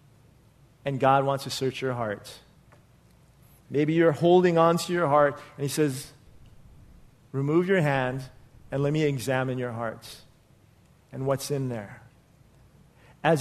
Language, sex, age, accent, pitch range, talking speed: English, male, 40-59, American, 135-165 Hz, 140 wpm